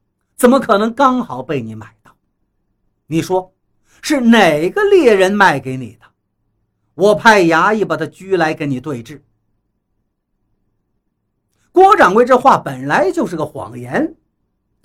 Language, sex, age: Chinese, male, 50-69